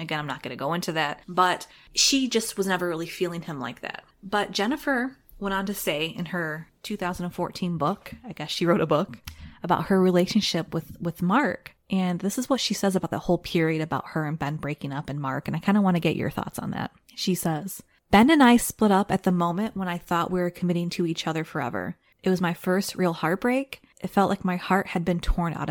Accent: American